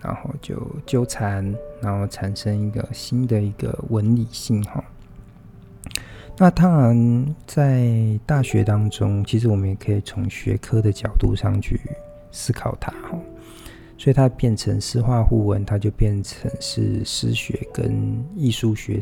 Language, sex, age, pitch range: Chinese, male, 50-69, 105-130 Hz